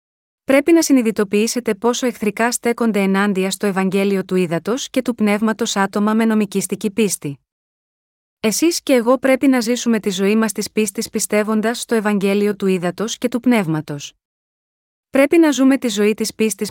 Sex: female